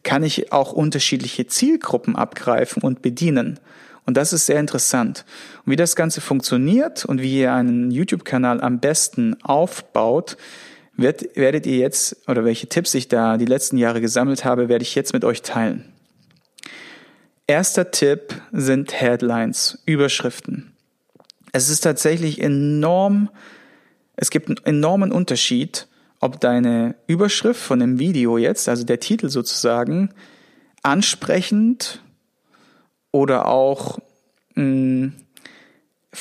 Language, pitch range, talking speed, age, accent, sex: German, 125-180 Hz, 120 wpm, 40-59, German, male